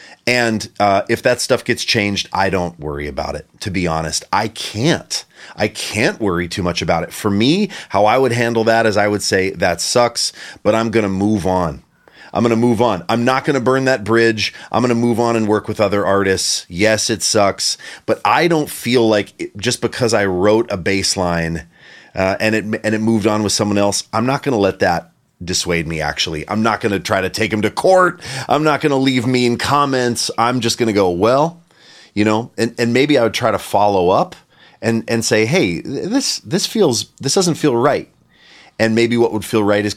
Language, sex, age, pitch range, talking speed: English, male, 30-49, 100-120 Hz, 225 wpm